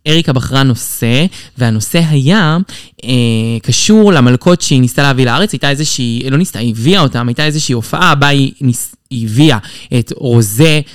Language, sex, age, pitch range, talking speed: Hebrew, male, 20-39, 125-175 Hz, 155 wpm